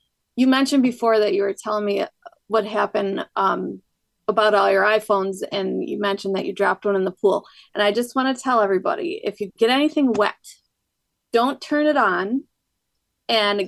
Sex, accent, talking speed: female, American, 185 wpm